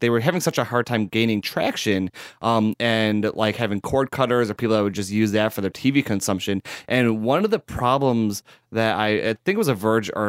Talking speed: 220 wpm